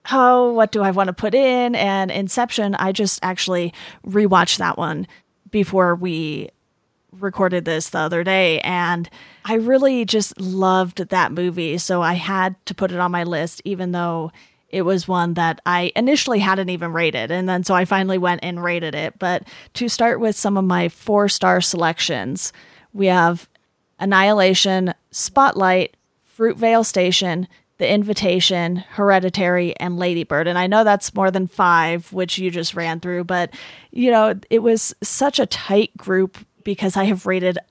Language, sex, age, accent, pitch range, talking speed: English, female, 30-49, American, 180-205 Hz, 165 wpm